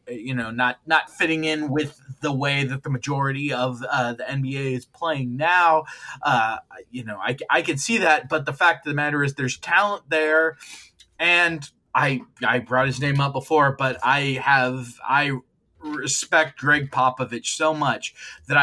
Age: 20-39